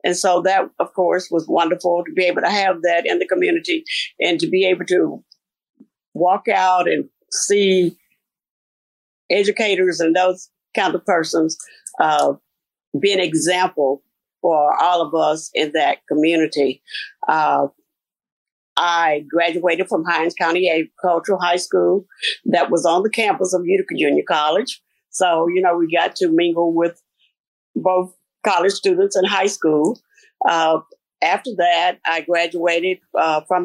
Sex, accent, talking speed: female, American, 145 wpm